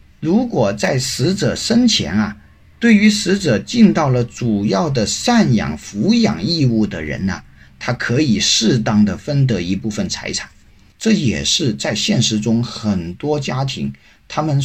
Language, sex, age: Chinese, male, 50-69